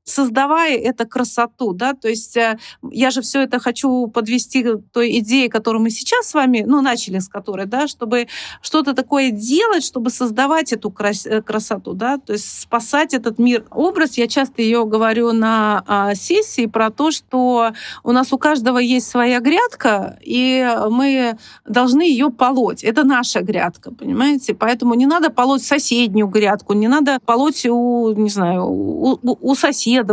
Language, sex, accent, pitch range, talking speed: Russian, female, native, 220-270 Hz, 155 wpm